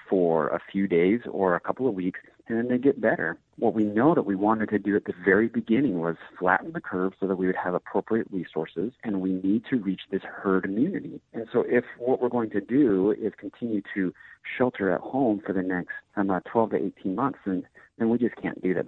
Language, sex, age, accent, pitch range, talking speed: English, male, 40-59, American, 90-110 Hz, 240 wpm